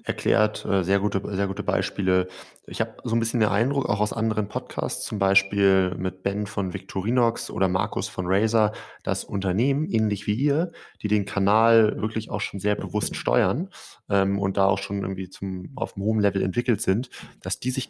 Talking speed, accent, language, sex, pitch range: 190 wpm, German, German, male, 95-105 Hz